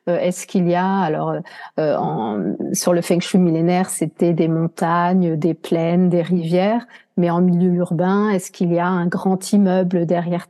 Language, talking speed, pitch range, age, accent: French, 175 wpm, 180-220 Hz, 40-59, French